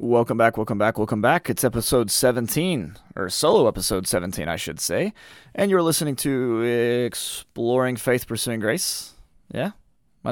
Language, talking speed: English, 150 wpm